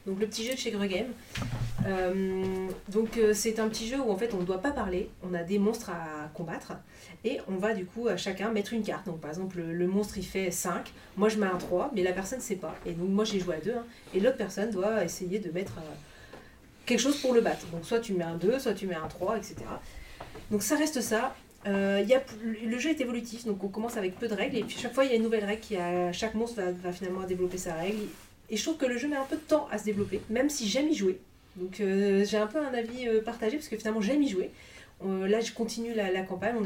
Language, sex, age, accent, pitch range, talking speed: French, female, 30-49, French, 185-230 Hz, 275 wpm